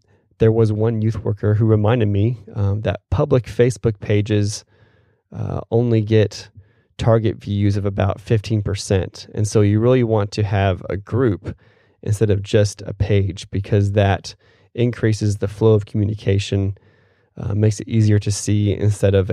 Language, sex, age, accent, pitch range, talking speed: English, male, 20-39, American, 100-110 Hz, 155 wpm